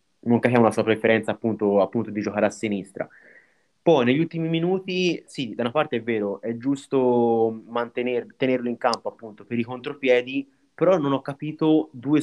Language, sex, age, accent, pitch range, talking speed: Italian, male, 30-49, native, 115-140 Hz, 170 wpm